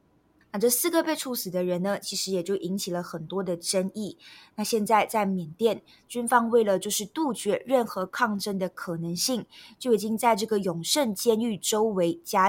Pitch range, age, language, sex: 185-235 Hz, 20-39, Chinese, female